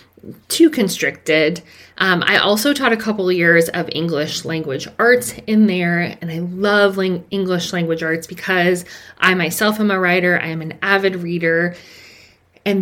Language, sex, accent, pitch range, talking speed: English, female, American, 165-210 Hz, 160 wpm